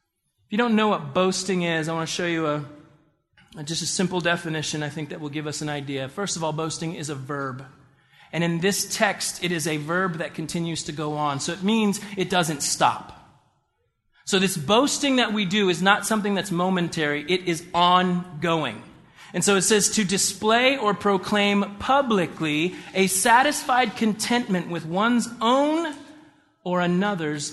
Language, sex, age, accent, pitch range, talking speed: English, male, 30-49, American, 155-215 Hz, 180 wpm